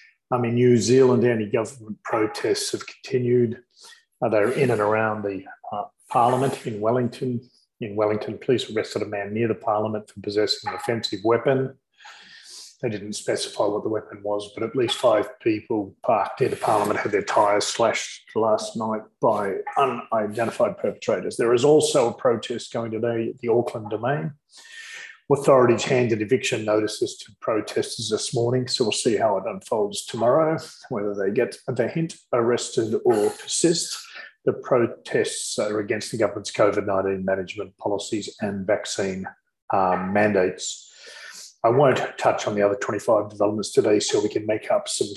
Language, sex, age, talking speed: English, male, 30-49, 160 wpm